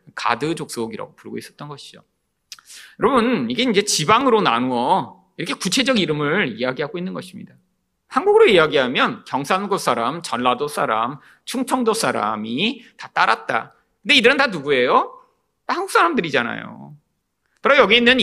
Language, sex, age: Korean, male, 40-59